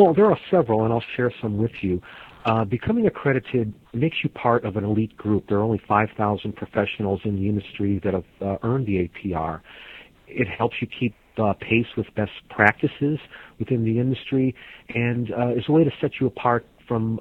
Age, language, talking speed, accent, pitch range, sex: 50-69, English, 195 wpm, American, 105-125 Hz, male